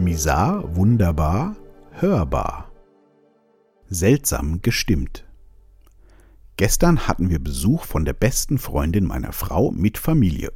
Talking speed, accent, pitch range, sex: 95 wpm, German, 80-110 Hz, male